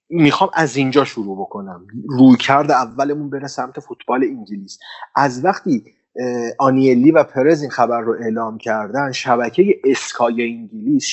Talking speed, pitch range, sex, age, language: 135 wpm, 125-160 Hz, male, 30-49, Persian